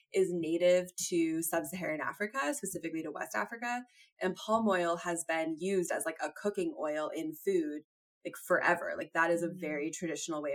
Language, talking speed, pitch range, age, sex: English, 175 wpm, 165-220 Hz, 20-39, female